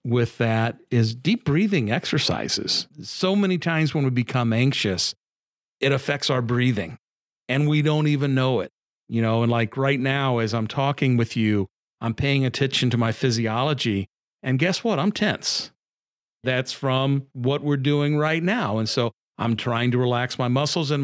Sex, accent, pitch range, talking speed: male, American, 115-155 Hz, 175 wpm